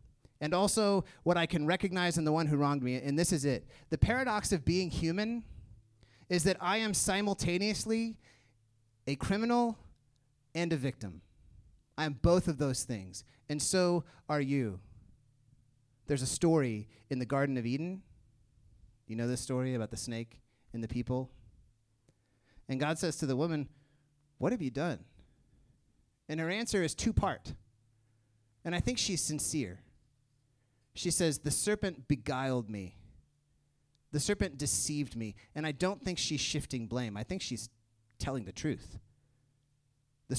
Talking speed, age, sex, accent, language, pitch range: 155 wpm, 30-49, male, American, English, 120-160 Hz